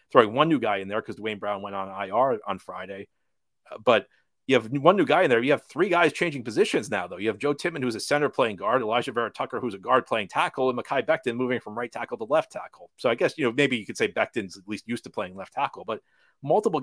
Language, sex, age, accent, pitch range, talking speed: English, male, 30-49, American, 110-155 Hz, 275 wpm